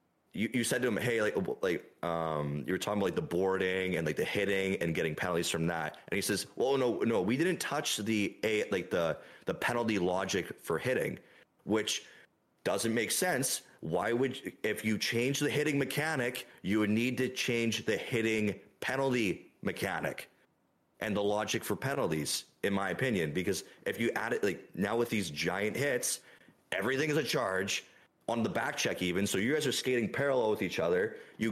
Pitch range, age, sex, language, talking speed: 95-120 Hz, 30-49, male, English, 195 wpm